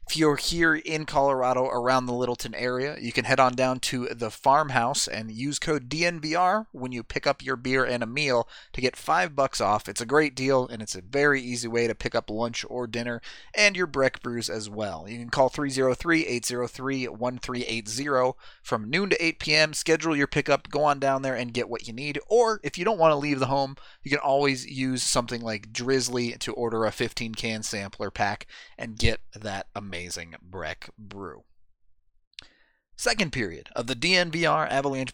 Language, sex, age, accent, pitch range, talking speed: English, male, 30-49, American, 115-145 Hz, 195 wpm